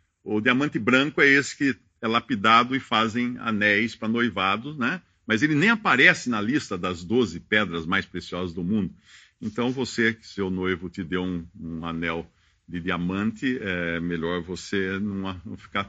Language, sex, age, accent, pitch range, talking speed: English, male, 50-69, Brazilian, 95-140 Hz, 165 wpm